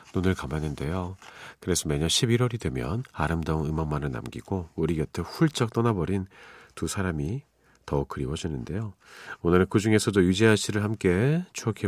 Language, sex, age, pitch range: Korean, male, 40-59, 85-130 Hz